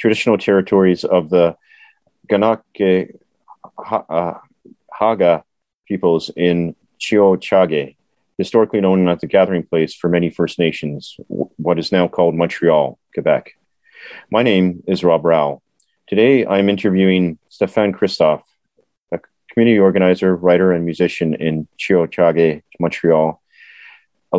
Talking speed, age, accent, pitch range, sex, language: 120 wpm, 30-49, American, 85-100 Hz, male, English